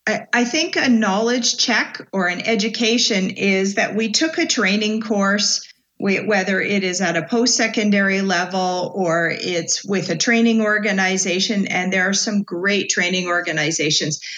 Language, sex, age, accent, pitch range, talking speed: English, female, 40-59, American, 185-225 Hz, 145 wpm